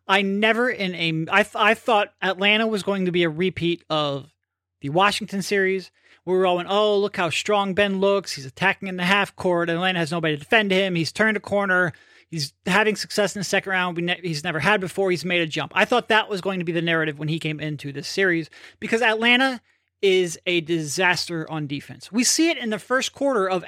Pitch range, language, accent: 170-230 Hz, English, American